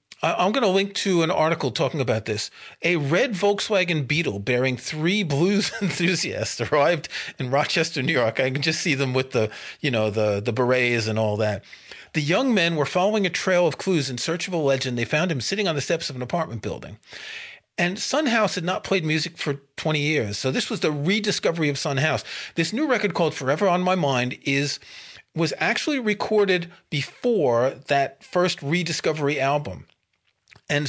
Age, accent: 40-59, American